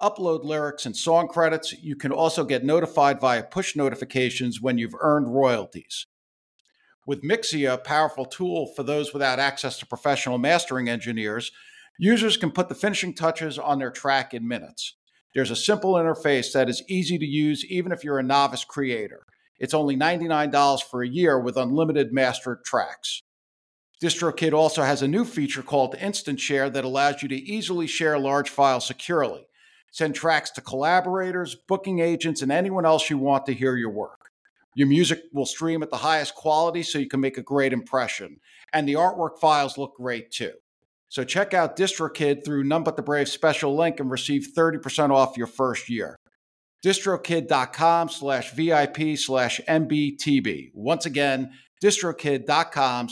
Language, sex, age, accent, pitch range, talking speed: English, male, 50-69, American, 135-165 Hz, 165 wpm